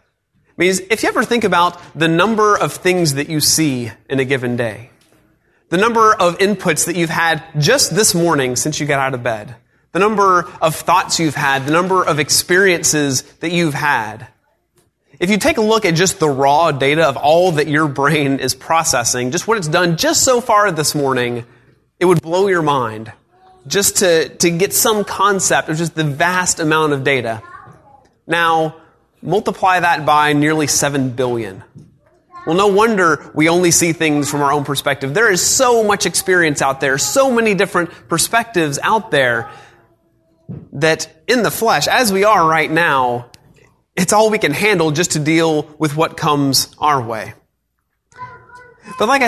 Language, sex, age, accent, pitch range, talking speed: English, male, 30-49, American, 145-185 Hz, 175 wpm